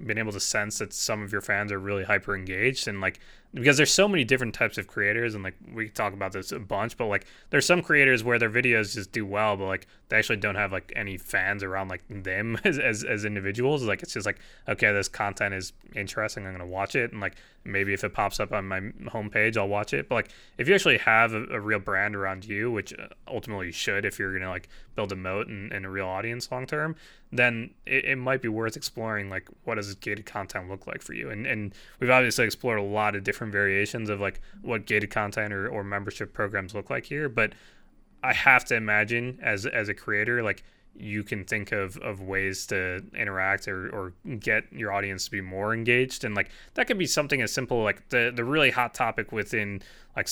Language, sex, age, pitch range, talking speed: English, male, 20-39, 100-120 Hz, 235 wpm